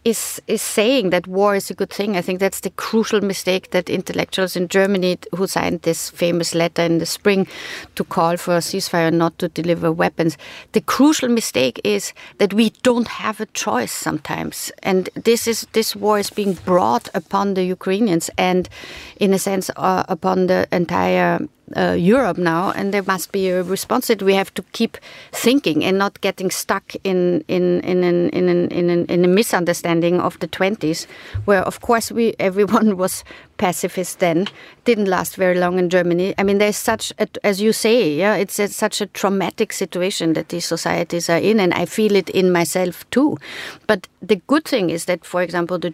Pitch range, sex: 175-210 Hz, female